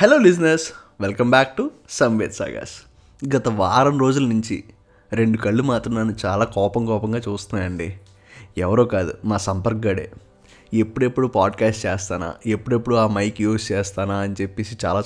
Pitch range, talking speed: 105-125 Hz, 140 wpm